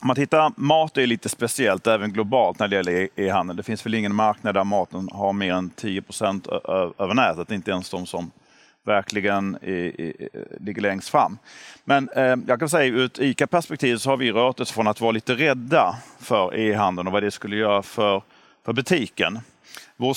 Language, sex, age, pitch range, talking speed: Swedish, male, 40-59, 105-125 Hz, 195 wpm